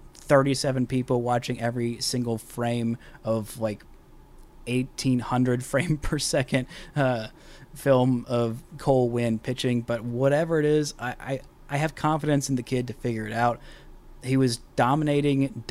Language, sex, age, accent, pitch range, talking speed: English, male, 20-39, American, 120-140 Hz, 140 wpm